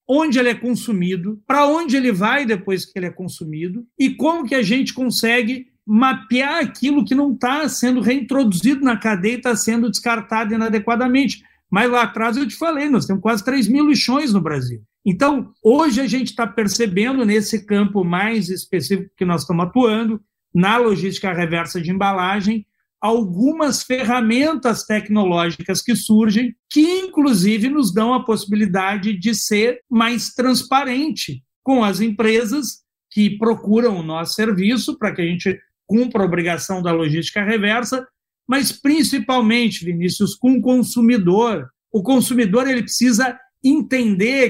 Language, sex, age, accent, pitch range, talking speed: Portuguese, male, 50-69, Brazilian, 205-260 Hz, 145 wpm